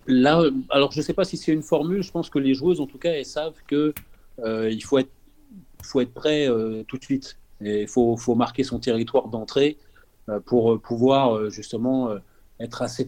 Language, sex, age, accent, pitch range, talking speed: French, male, 40-59, French, 110-135 Hz, 210 wpm